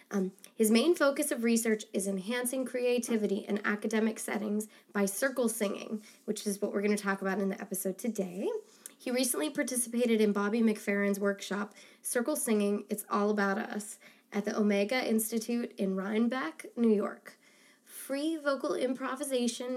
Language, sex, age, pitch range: English, female, 20-39, 205-245 Hz